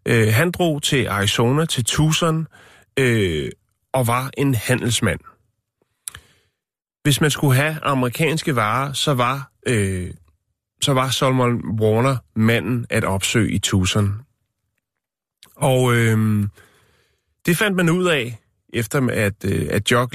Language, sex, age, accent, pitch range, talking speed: Danish, male, 30-49, native, 105-135 Hz, 110 wpm